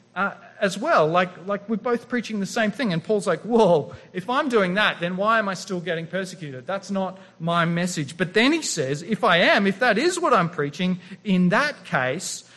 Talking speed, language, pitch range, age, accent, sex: 220 wpm, English, 140-210 Hz, 40-59, Australian, male